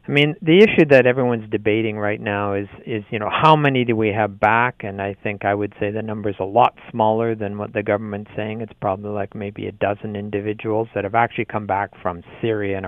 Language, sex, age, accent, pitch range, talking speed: English, male, 50-69, American, 100-130 Hz, 240 wpm